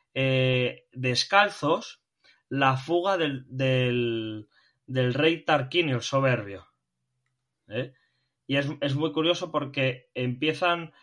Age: 20-39